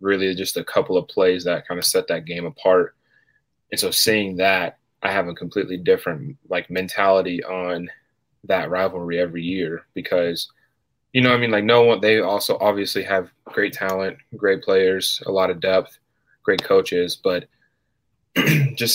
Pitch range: 90-110 Hz